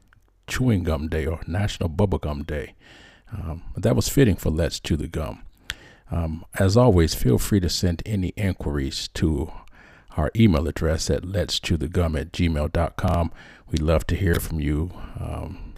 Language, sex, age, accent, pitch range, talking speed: English, male, 50-69, American, 80-95 Hz, 165 wpm